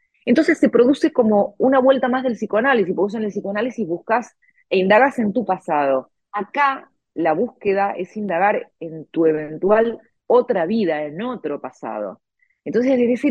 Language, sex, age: Spanish, female, 30-49